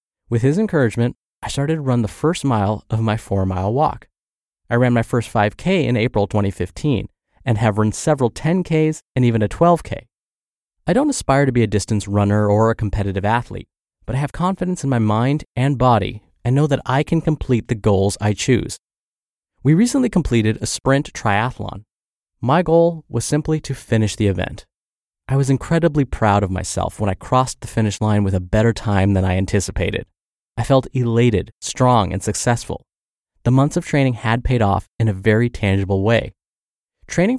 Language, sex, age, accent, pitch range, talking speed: English, male, 30-49, American, 105-140 Hz, 185 wpm